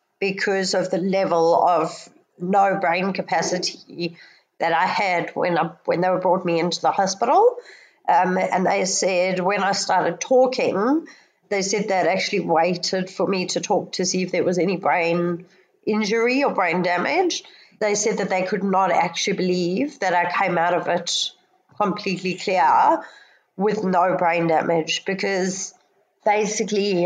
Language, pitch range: English, 180-215 Hz